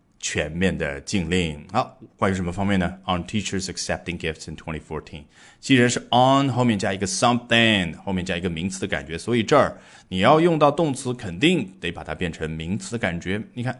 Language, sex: Chinese, male